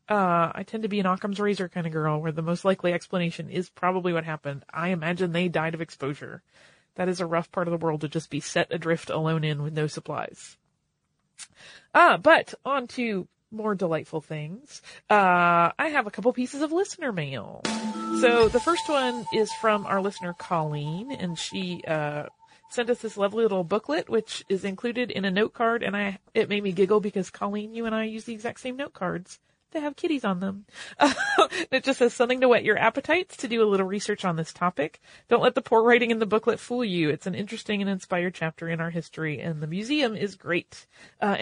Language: English